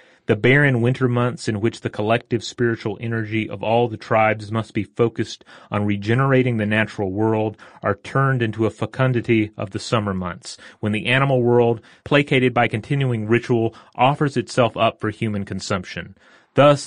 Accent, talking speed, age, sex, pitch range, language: American, 165 wpm, 30-49, male, 100-120 Hz, English